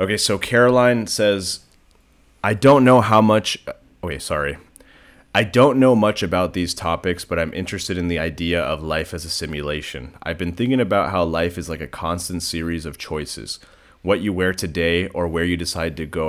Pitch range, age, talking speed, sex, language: 80-90 Hz, 30-49, 190 wpm, male, English